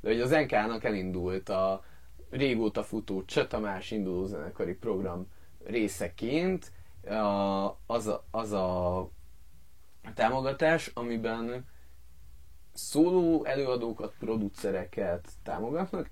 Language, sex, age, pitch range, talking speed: Hungarian, male, 30-49, 90-120 Hz, 80 wpm